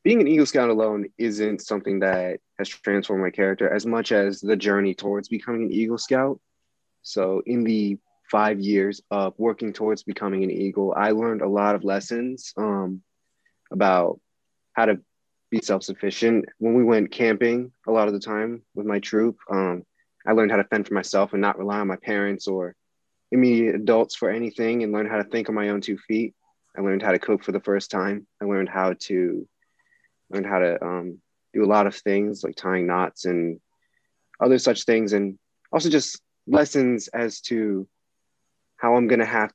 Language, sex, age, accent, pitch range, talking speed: English, male, 20-39, American, 100-115 Hz, 190 wpm